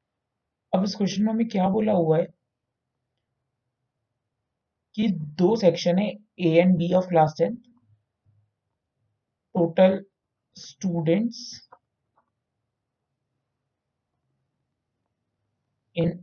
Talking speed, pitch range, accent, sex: 80 wpm, 155-195 Hz, native, male